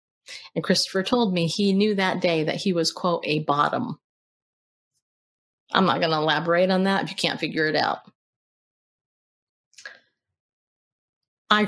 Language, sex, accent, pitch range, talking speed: English, female, American, 160-200 Hz, 145 wpm